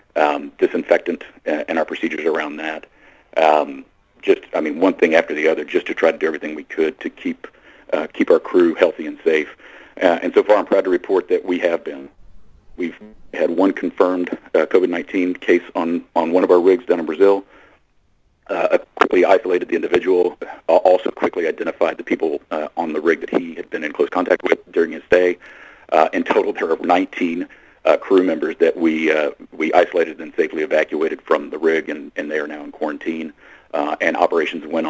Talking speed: 205 wpm